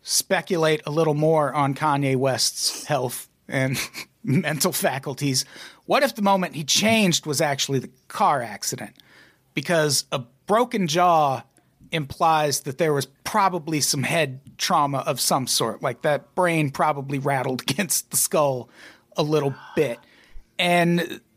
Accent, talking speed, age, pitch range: American, 140 wpm, 40-59, 145-185 Hz